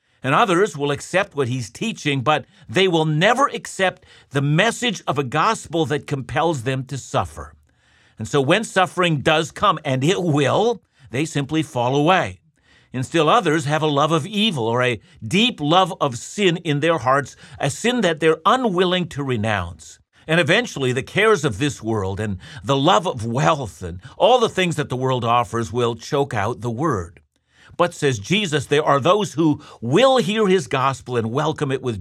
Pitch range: 120-170 Hz